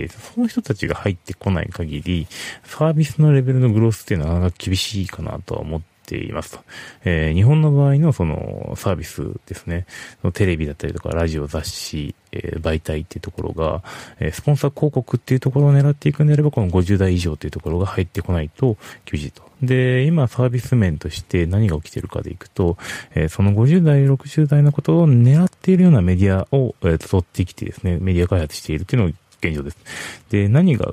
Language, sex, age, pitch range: Japanese, male, 30-49, 85-120 Hz